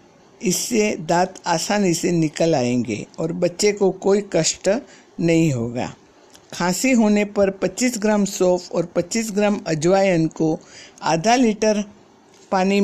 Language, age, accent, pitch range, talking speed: Hindi, 60-79, native, 175-210 Hz, 125 wpm